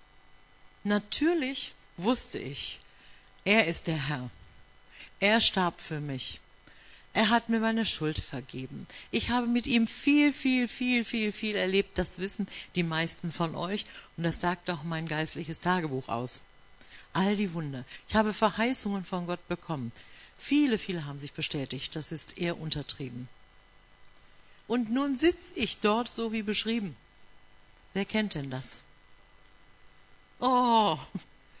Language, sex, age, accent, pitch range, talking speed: German, female, 60-79, German, 150-215 Hz, 135 wpm